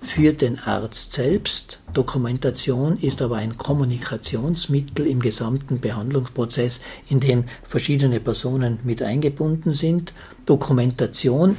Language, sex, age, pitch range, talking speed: German, male, 50-69, 115-145 Hz, 105 wpm